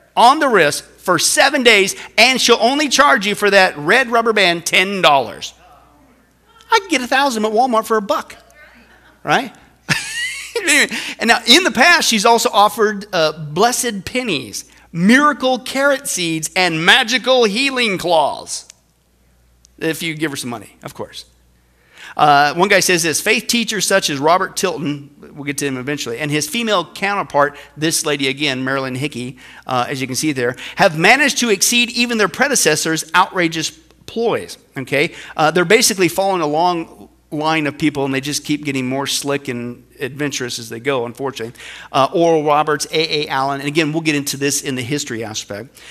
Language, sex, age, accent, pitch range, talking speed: English, male, 50-69, American, 140-215 Hz, 175 wpm